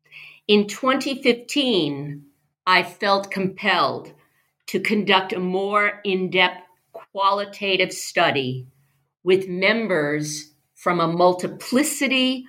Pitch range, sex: 160-195 Hz, female